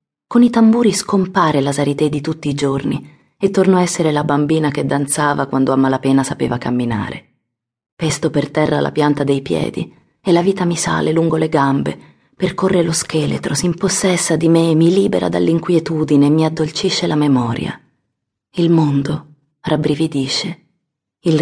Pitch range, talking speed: 135-160 Hz, 165 wpm